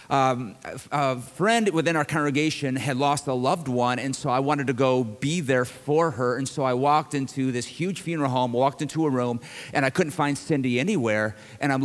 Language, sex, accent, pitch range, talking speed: English, male, American, 130-170 Hz, 215 wpm